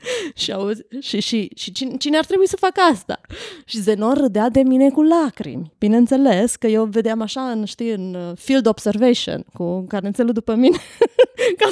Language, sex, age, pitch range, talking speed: Romanian, female, 20-39, 190-250 Hz, 180 wpm